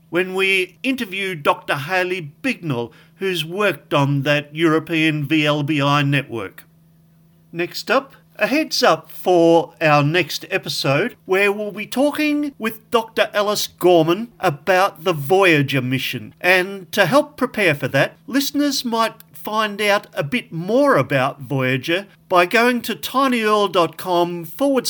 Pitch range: 150-200 Hz